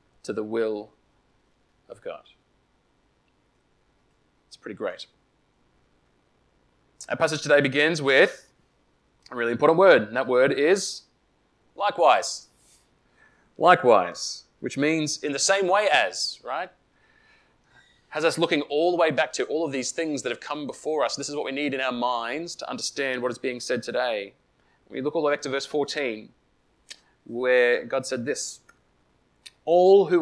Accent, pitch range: Australian, 125-170 Hz